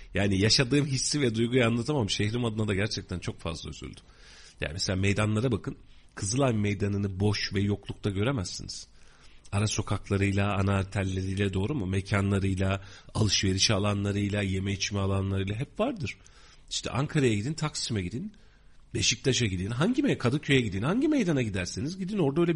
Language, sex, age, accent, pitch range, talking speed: Turkish, male, 40-59, native, 100-150 Hz, 140 wpm